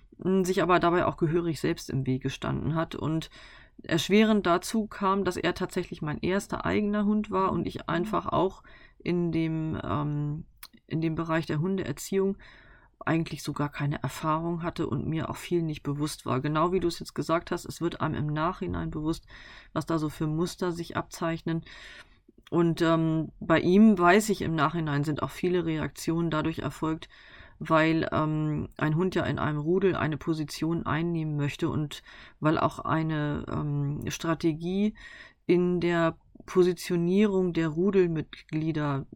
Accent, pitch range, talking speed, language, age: German, 155-180 Hz, 155 wpm, German, 30-49